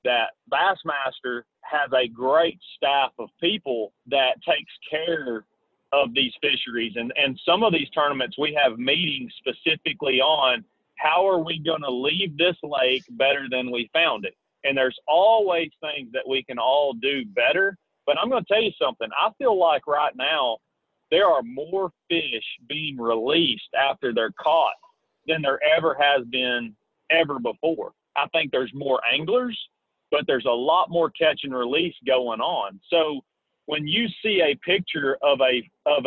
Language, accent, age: English, American, 40-59